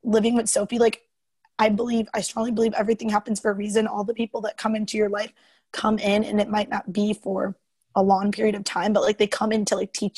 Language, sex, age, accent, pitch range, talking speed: English, female, 20-39, American, 205-225 Hz, 255 wpm